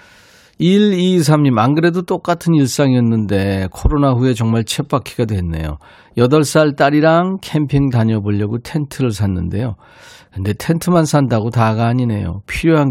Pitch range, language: 105-145 Hz, Korean